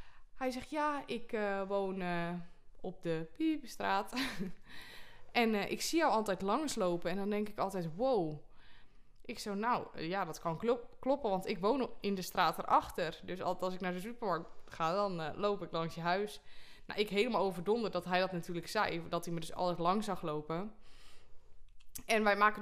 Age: 20-39